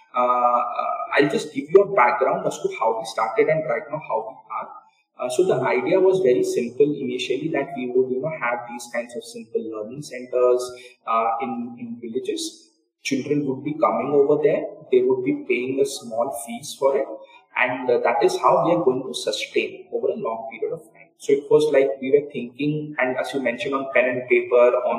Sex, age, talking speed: male, 20-39, 215 wpm